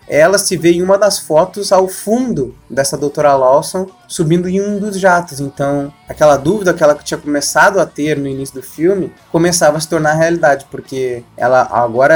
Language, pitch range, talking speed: Portuguese, 145-175 Hz, 190 wpm